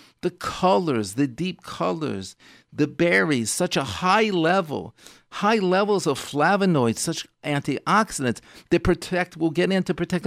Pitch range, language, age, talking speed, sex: 145-195 Hz, English, 50-69, 140 wpm, male